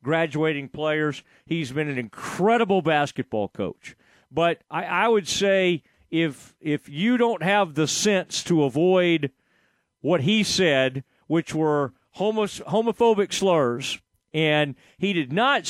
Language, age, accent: English, 40-59, American